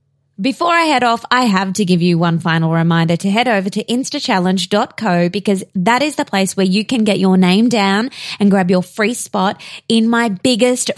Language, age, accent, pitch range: English, 20-39, Australian, 185-235 Hz